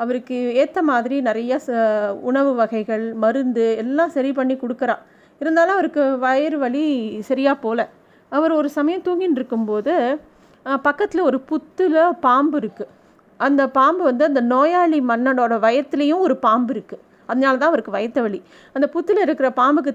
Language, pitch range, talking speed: Tamil, 230-295 Hz, 140 wpm